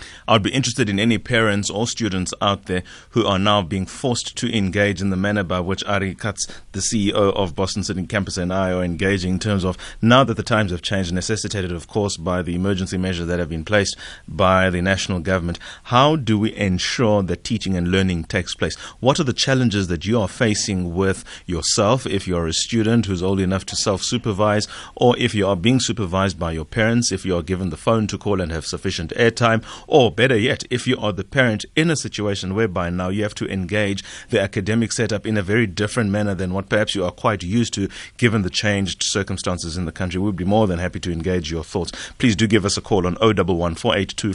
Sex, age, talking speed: male, 30-49, 230 wpm